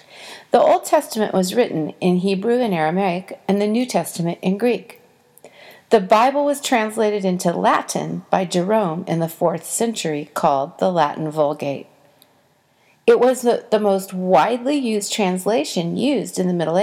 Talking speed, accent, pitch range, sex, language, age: 150 wpm, American, 175-230 Hz, female, English, 40-59